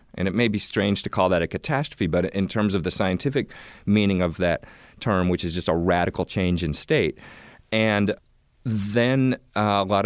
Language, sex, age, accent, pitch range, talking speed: English, male, 40-59, American, 85-105 Hz, 195 wpm